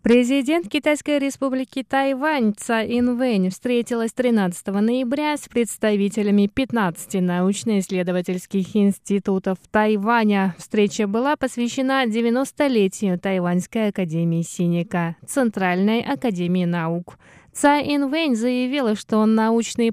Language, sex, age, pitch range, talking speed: Russian, female, 20-39, 195-260 Hz, 90 wpm